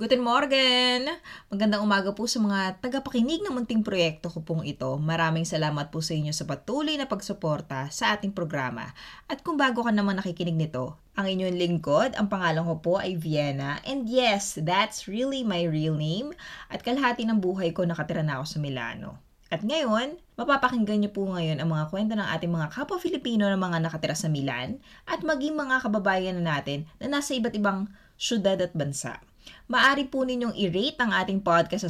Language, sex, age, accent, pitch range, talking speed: Filipino, female, 20-39, native, 170-240 Hz, 185 wpm